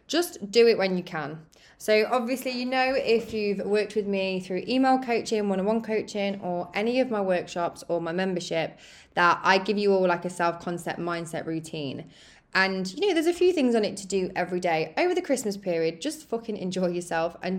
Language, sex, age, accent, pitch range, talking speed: English, female, 20-39, British, 175-210 Hz, 205 wpm